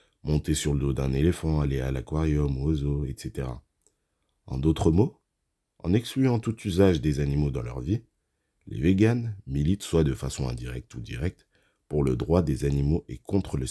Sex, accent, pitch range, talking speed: male, French, 70-90 Hz, 185 wpm